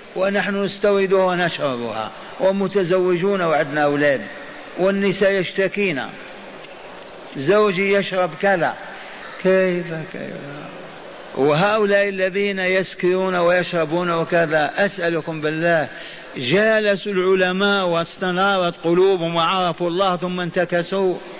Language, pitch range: Arabic, 170-200 Hz